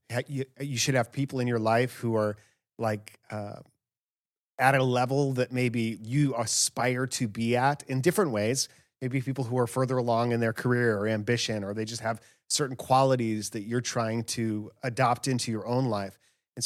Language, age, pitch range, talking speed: English, 30-49, 115-135 Hz, 185 wpm